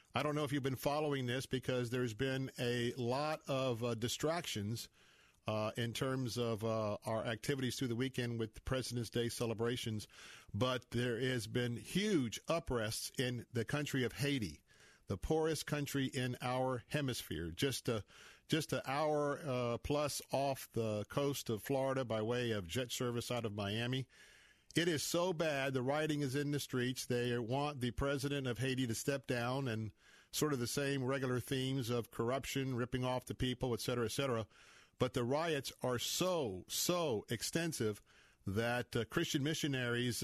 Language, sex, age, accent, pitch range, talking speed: English, male, 50-69, American, 120-135 Hz, 170 wpm